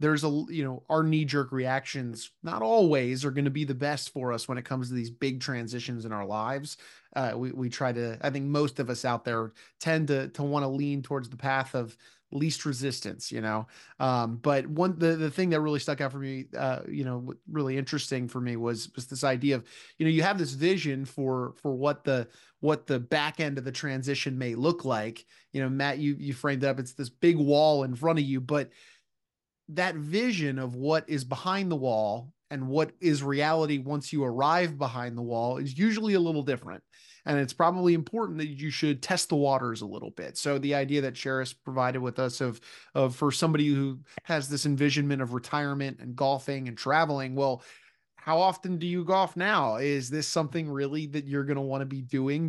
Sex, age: male, 30-49